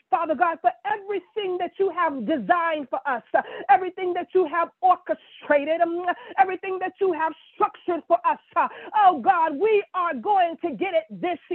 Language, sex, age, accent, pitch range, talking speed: English, female, 40-59, American, 330-390 Hz, 175 wpm